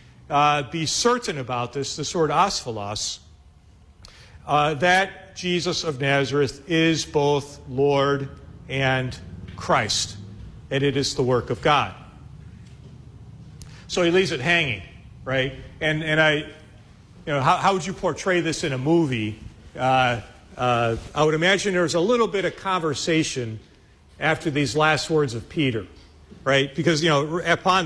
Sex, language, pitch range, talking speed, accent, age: male, English, 130-175 Hz, 140 wpm, American, 40-59